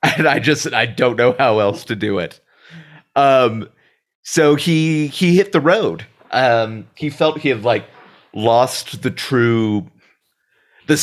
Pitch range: 105-145 Hz